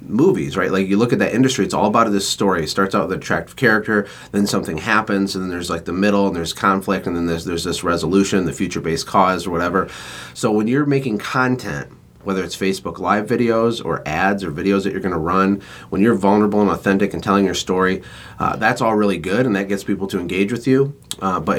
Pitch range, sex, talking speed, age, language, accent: 95-105 Hz, male, 240 wpm, 30-49, English, American